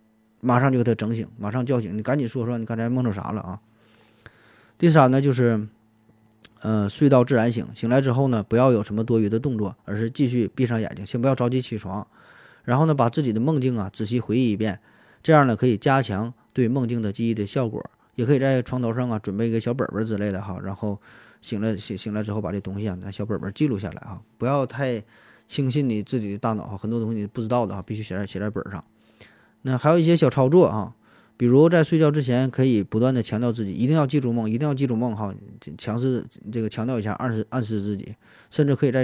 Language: Chinese